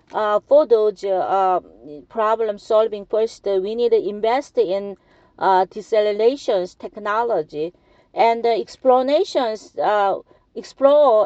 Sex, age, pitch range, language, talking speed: female, 50-69, 205-275 Hz, English, 100 wpm